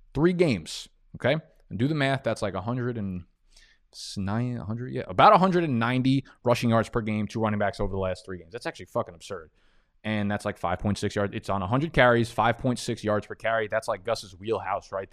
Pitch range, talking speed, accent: 105-125 Hz, 200 wpm, American